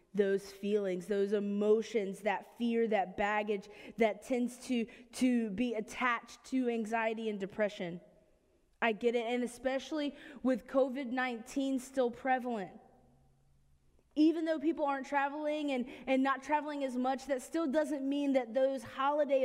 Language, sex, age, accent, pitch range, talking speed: English, female, 20-39, American, 210-265 Hz, 140 wpm